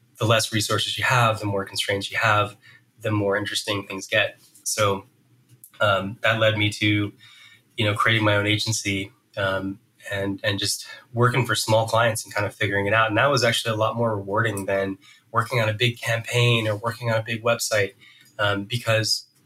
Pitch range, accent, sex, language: 105-120 Hz, American, male, English